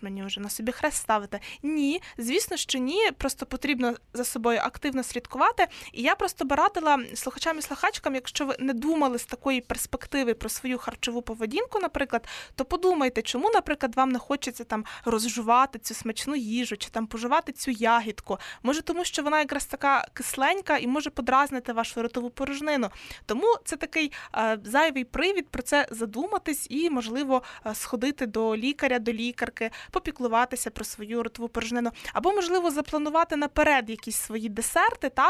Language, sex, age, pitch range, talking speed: Ukrainian, female, 20-39, 235-300 Hz, 160 wpm